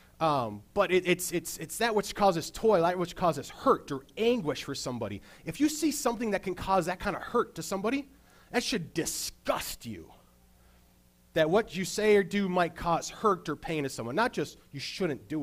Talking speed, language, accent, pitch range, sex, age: 205 wpm, English, American, 120-190 Hz, male, 30-49